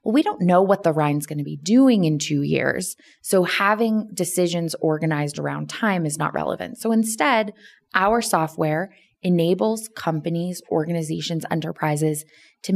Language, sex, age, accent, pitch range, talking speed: English, female, 20-39, American, 155-210 Hz, 150 wpm